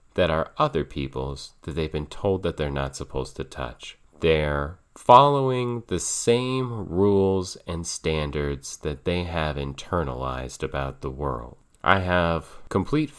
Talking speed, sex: 140 wpm, male